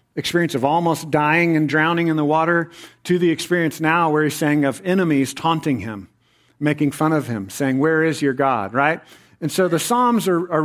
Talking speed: 205 wpm